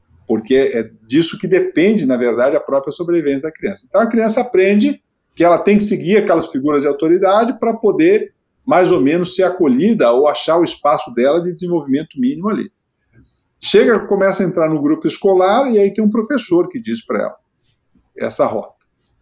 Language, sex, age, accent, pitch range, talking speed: Portuguese, male, 40-59, Brazilian, 135-215 Hz, 185 wpm